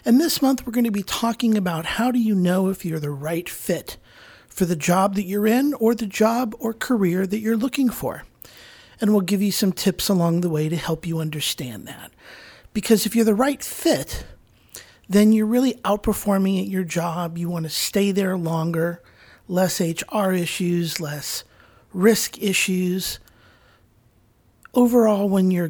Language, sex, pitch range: English, male, 165-210 Hz